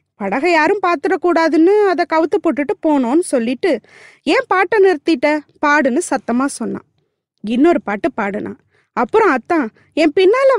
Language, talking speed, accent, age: Tamil, 115 wpm, native, 20-39